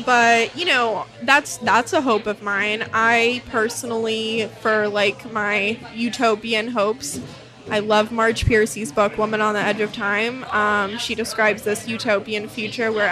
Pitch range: 215-255 Hz